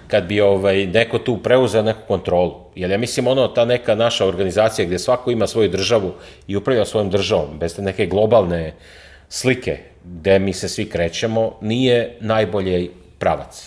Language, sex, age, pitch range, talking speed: English, male, 40-59, 85-105 Hz, 165 wpm